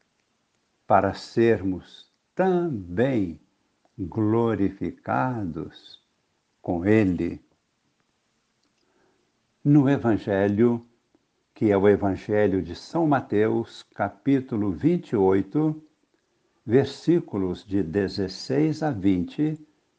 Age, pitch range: 60-79, 95-140 Hz